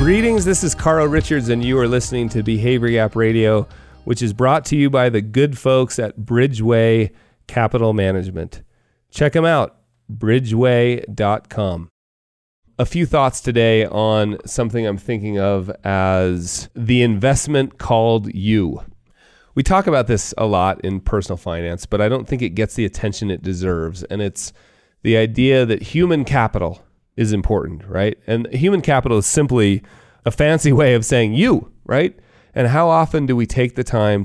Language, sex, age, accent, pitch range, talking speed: English, male, 30-49, American, 100-125 Hz, 165 wpm